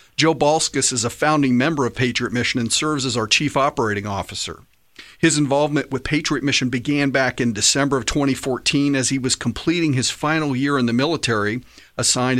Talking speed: 185 wpm